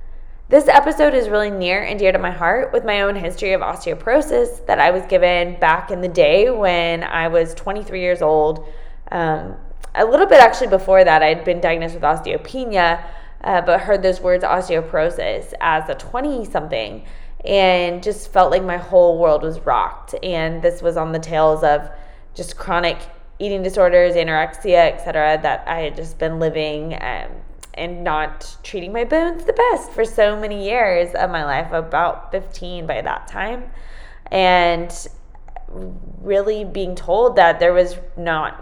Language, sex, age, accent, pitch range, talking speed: English, female, 20-39, American, 160-195 Hz, 170 wpm